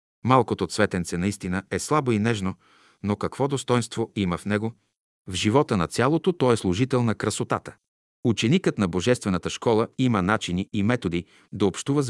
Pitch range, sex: 95-125 Hz, male